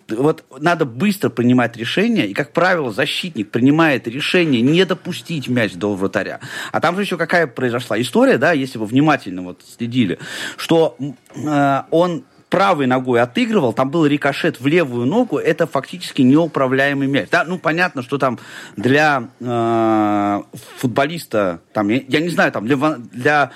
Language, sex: Russian, male